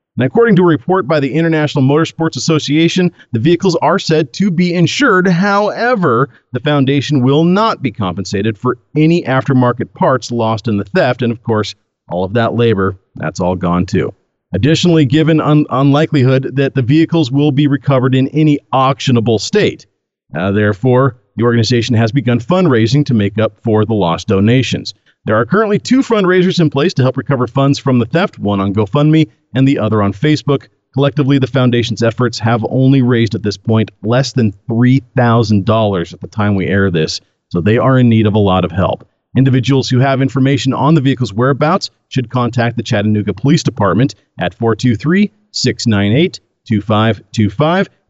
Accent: American